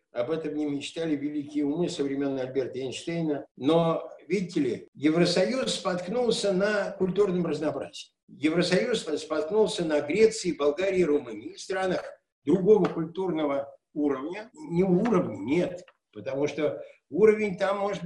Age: 60-79